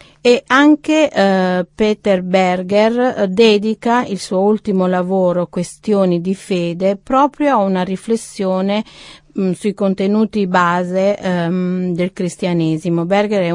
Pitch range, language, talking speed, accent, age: 175-205 Hz, Italian, 105 wpm, native, 40-59